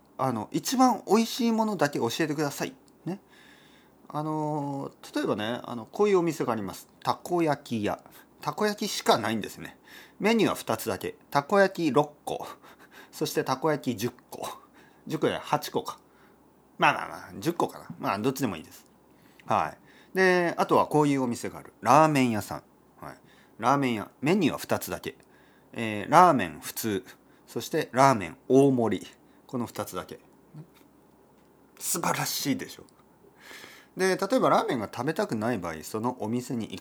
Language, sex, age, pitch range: Japanese, male, 40-59, 100-155 Hz